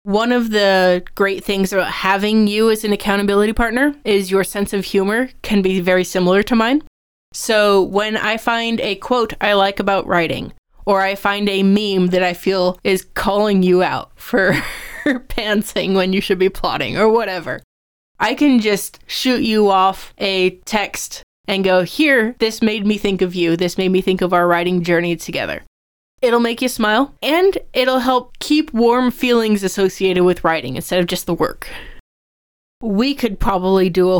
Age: 20-39